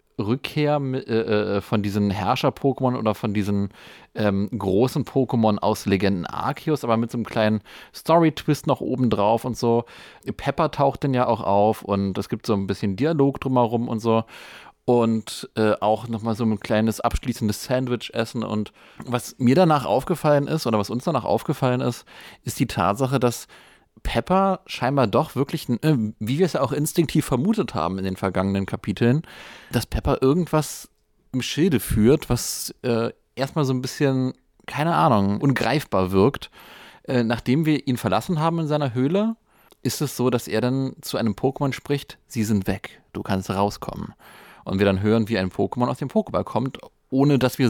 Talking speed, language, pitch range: 170 wpm, German, 110-140 Hz